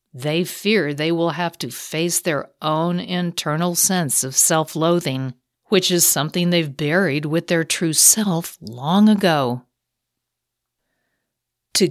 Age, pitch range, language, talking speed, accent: 50-69, 150-200 Hz, English, 125 wpm, American